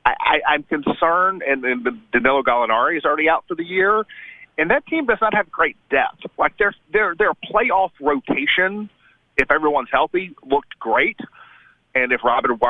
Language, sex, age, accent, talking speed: English, male, 40-59, American, 165 wpm